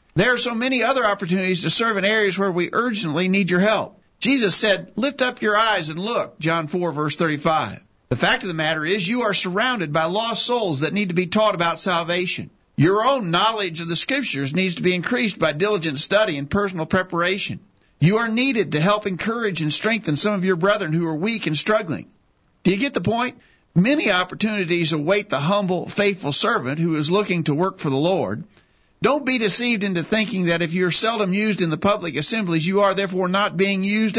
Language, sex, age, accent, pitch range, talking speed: English, male, 50-69, American, 160-210 Hz, 210 wpm